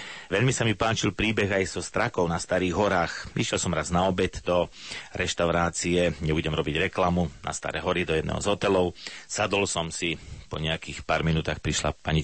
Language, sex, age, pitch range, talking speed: Slovak, male, 30-49, 80-95 Hz, 180 wpm